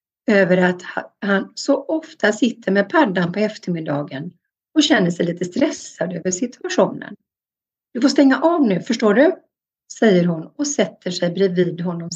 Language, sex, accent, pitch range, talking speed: Swedish, female, native, 180-235 Hz, 155 wpm